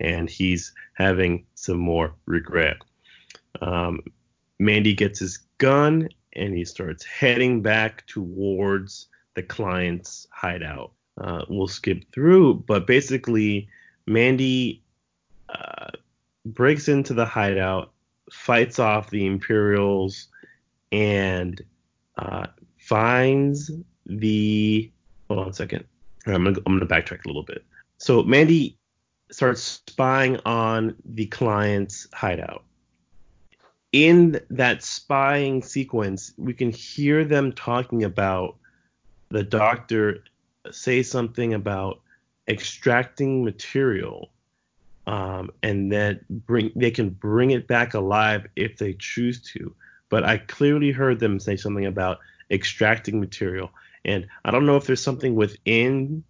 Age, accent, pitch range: 30-49, American, 95-125 Hz